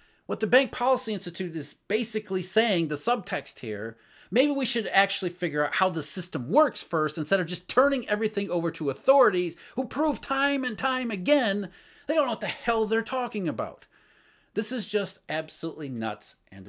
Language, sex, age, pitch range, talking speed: English, male, 40-59, 160-240 Hz, 185 wpm